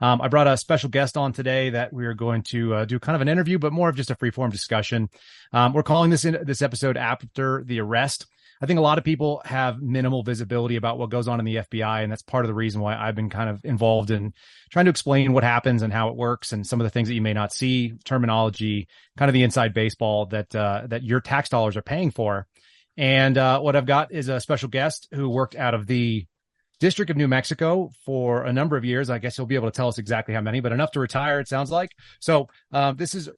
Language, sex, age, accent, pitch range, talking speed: English, male, 30-49, American, 115-140 Hz, 260 wpm